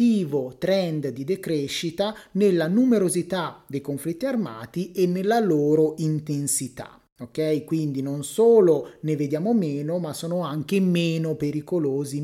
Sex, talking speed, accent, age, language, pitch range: male, 120 wpm, native, 30-49, Italian, 140-200 Hz